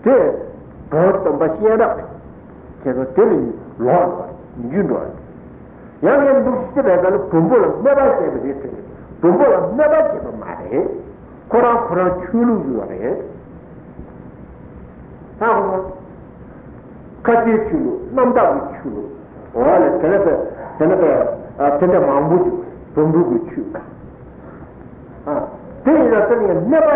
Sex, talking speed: male, 85 wpm